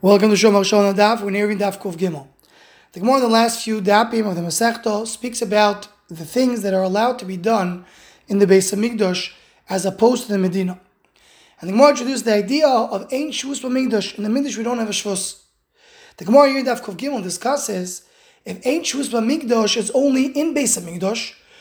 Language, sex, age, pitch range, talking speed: English, male, 20-39, 205-270 Hz, 200 wpm